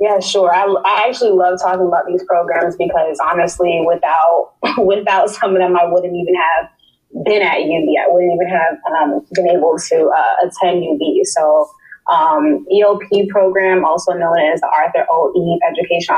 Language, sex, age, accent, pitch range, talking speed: English, female, 20-39, American, 170-205 Hz, 170 wpm